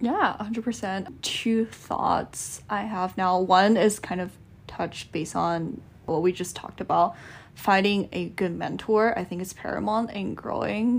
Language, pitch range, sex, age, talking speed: English, 185-220 Hz, female, 10-29, 160 wpm